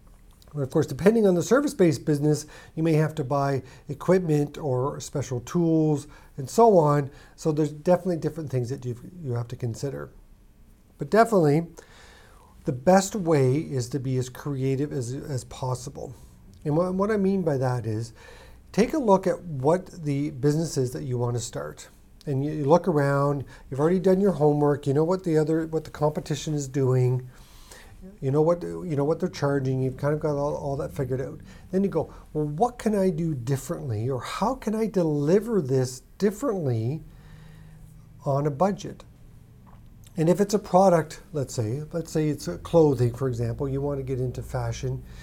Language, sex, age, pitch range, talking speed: English, male, 50-69, 130-165 Hz, 180 wpm